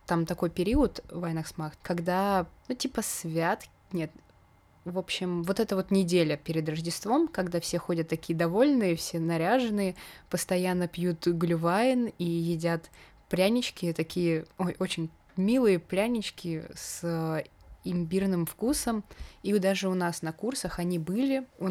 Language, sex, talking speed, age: Russian, female, 130 wpm, 20-39